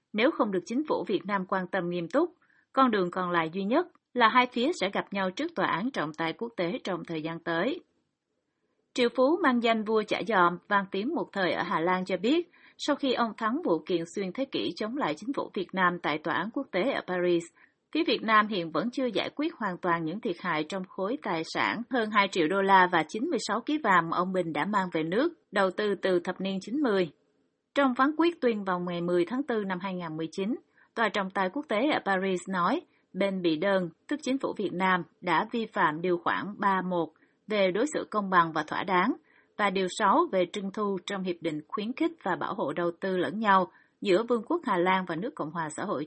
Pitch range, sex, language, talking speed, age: 180-240 Hz, female, Vietnamese, 235 wpm, 30-49